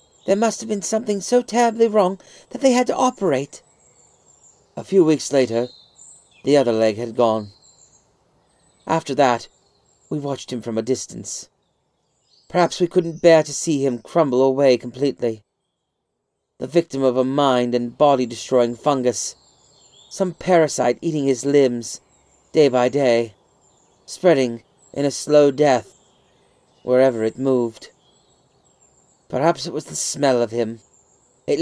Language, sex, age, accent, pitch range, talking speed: English, male, 40-59, British, 110-145 Hz, 140 wpm